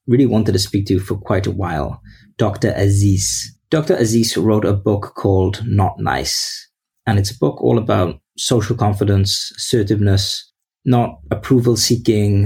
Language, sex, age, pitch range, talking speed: English, male, 30-49, 95-110 Hz, 150 wpm